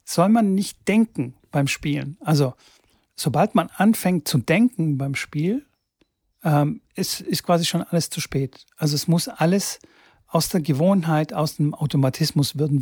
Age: 40-59